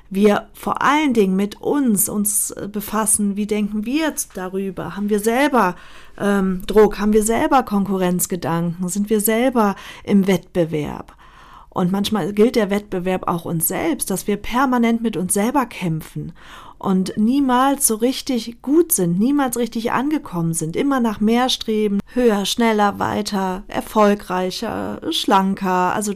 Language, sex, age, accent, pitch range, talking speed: German, female, 40-59, German, 180-230 Hz, 140 wpm